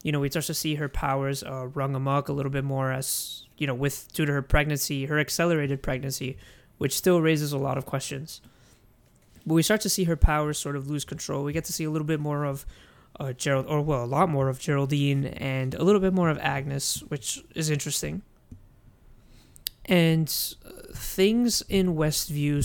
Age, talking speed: 20-39, 200 wpm